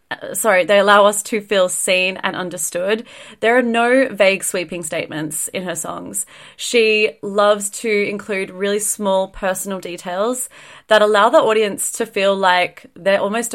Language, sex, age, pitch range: English, female, 30-49, 175-210 Hz